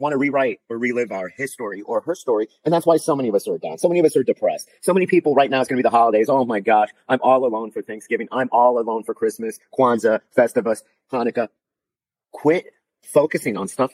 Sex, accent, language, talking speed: male, American, English, 240 wpm